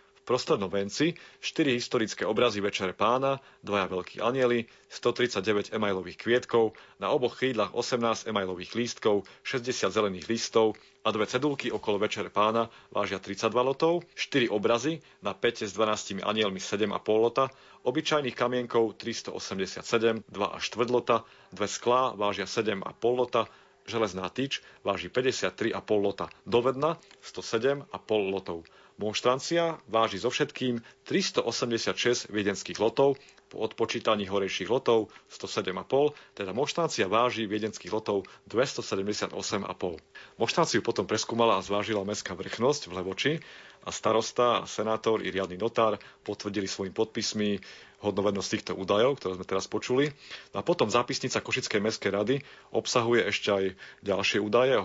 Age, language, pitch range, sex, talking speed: 40-59, Slovak, 100-120 Hz, male, 125 wpm